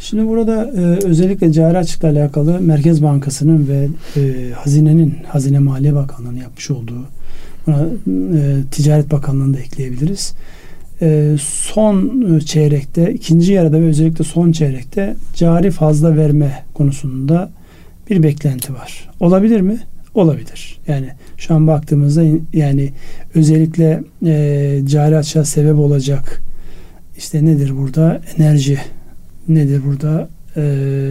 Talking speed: 110 wpm